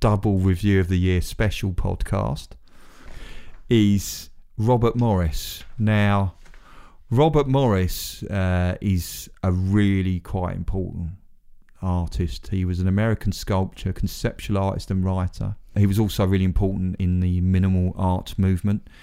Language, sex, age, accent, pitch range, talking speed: English, male, 30-49, British, 85-100 Hz, 125 wpm